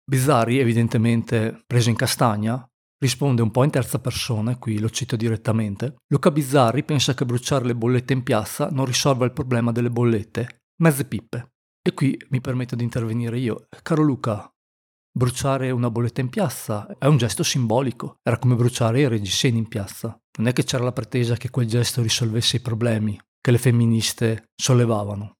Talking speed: 170 wpm